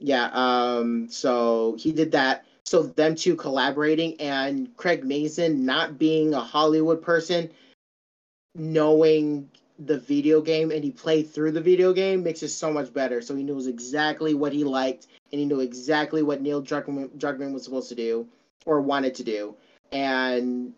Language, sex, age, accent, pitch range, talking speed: English, male, 30-49, American, 135-165 Hz, 170 wpm